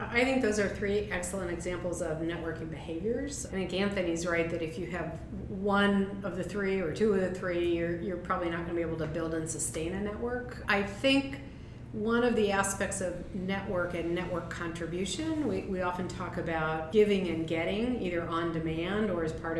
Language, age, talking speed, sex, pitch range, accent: English, 40-59, 200 wpm, female, 165-200 Hz, American